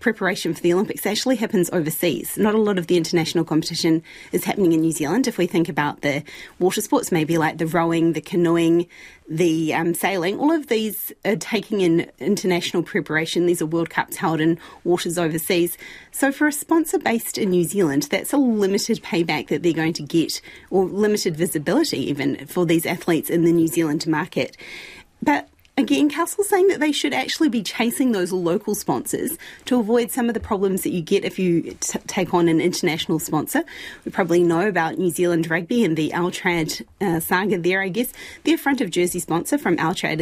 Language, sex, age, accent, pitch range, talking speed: English, female, 30-49, Australian, 170-225 Hz, 195 wpm